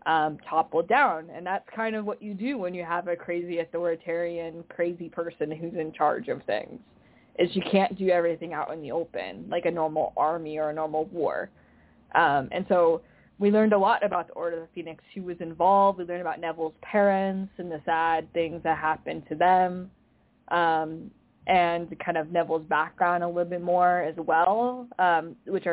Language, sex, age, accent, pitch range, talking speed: English, female, 20-39, American, 165-195 Hz, 195 wpm